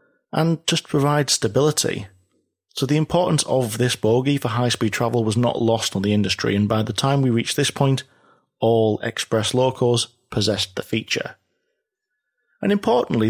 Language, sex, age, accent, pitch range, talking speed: English, male, 30-49, British, 105-140 Hz, 160 wpm